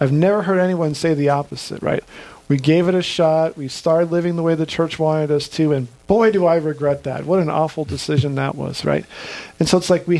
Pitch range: 150-180 Hz